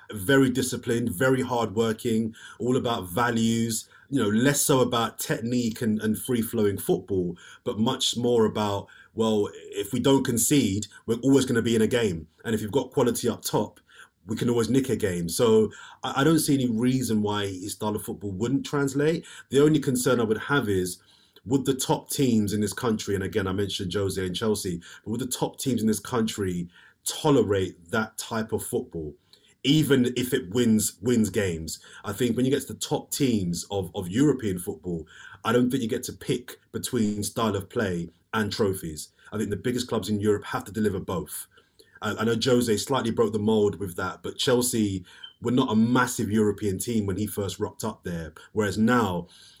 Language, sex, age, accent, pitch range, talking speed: English, male, 30-49, British, 100-125 Hz, 200 wpm